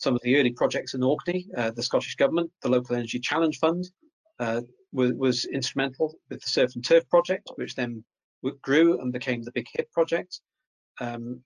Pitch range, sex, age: 125-170 Hz, male, 40-59